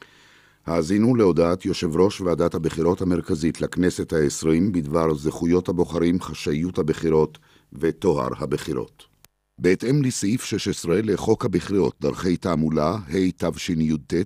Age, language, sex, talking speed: 50-69, Hebrew, male, 100 wpm